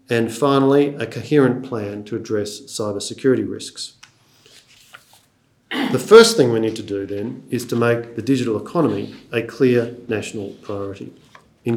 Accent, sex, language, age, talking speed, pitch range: Australian, male, English, 40-59, 145 wpm, 110-130 Hz